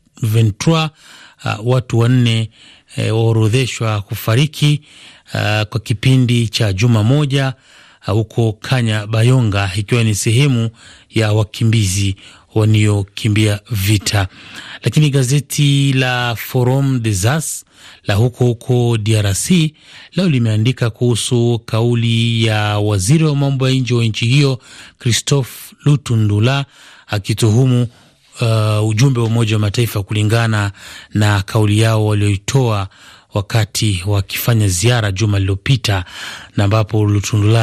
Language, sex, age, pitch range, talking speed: Swahili, male, 30-49, 110-130 Hz, 110 wpm